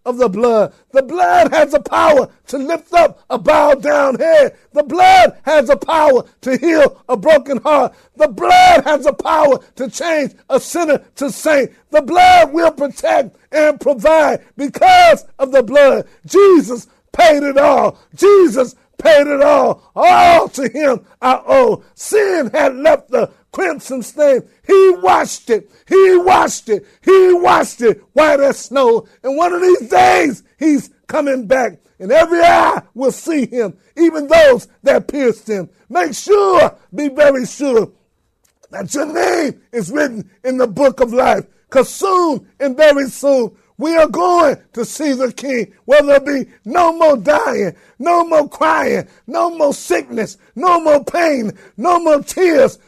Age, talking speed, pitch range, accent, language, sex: 60-79, 160 wpm, 255-340 Hz, American, English, male